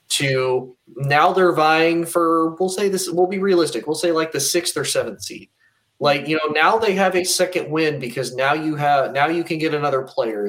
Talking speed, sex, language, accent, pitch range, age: 215 wpm, male, English, American, 120-170 Hz, 20-39